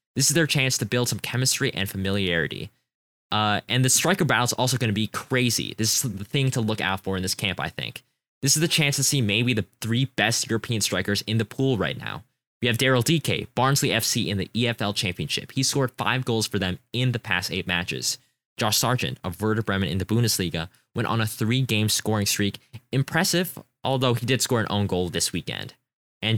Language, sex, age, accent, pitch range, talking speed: English, male, 20-39, American, 100-130 Hz, 220 wpm